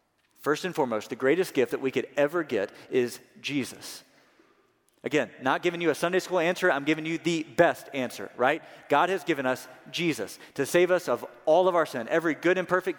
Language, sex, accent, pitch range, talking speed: English, male, American, 155-190 Hz, 210 wpm